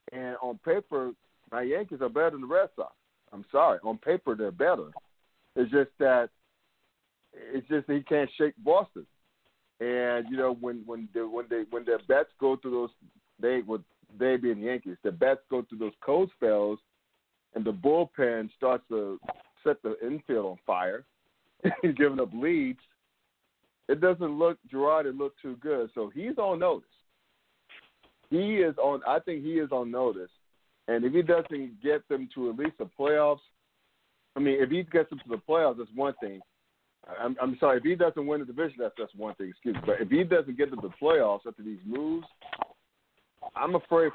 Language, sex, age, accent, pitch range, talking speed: English, male, 50-69, American, 120-155 Hz, 190 wpm